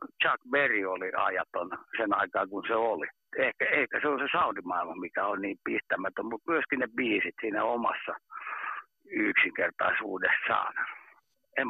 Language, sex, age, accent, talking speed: Finnish, male, 60-79, native, 140 wpm